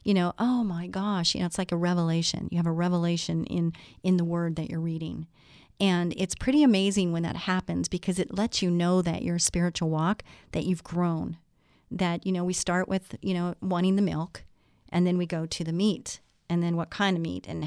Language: English